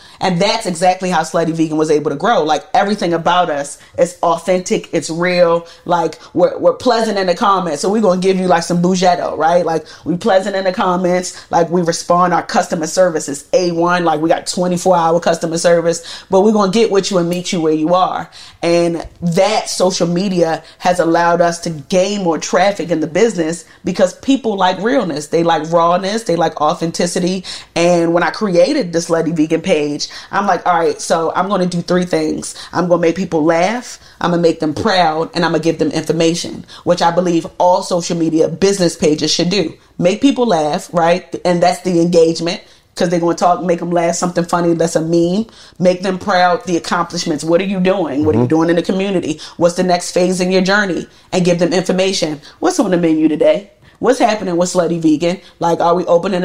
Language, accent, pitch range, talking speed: English, American, 165-185 Hz, 215 wpm